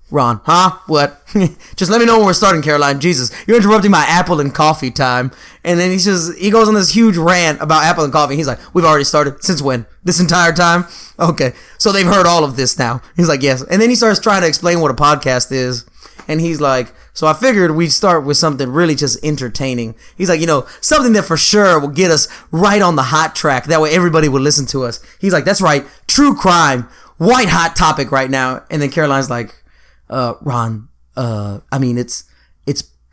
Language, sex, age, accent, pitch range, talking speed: English, male, 20-39, American, 125-170 Hz, 225 wpm